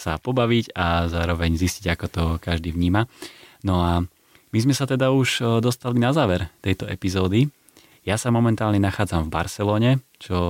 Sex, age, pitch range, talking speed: male, 30-49, 85-100 Hz, 160 wpm